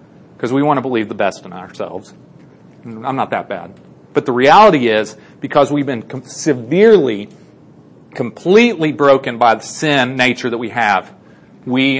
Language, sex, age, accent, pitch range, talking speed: English, male, 40-59, American, 130-170 Hz, 155 wpm